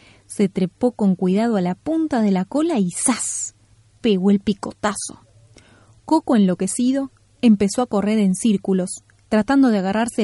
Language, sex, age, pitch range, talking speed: Spanish, female, 20-39, 185-255 Hz, 145 wpm